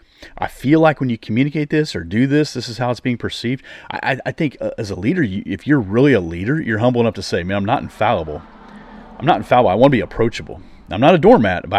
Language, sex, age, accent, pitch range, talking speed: English, male, 40-59, American, 100-145 Hz, 260 wpm